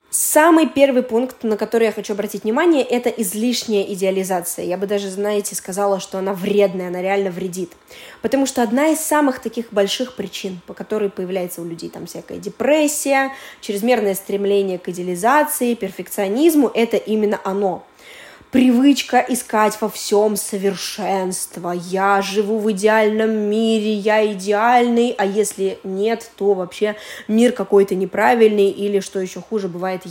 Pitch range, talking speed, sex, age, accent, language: 195-240 Hz, 145 wpm, female, 20-39, native, Russian